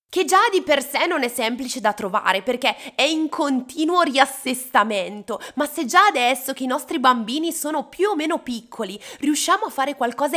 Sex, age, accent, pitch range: female, 20-39, native, 220-295 Hz